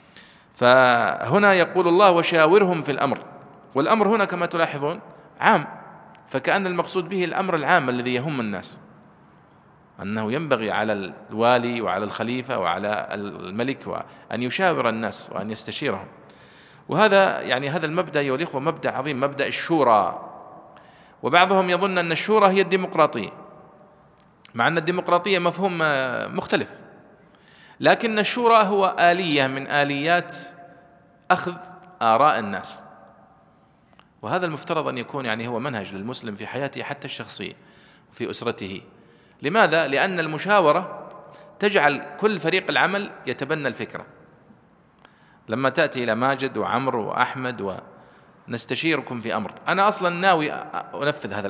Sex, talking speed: male, 115 wpm